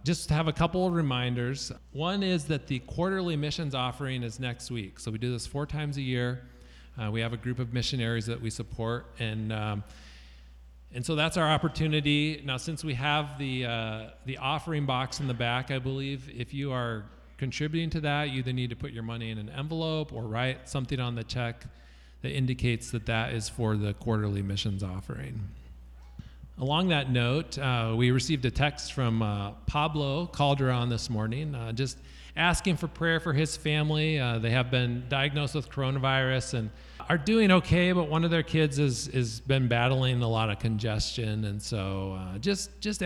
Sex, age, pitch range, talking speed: male, 40-59, 115-145 Hz, 195 wpm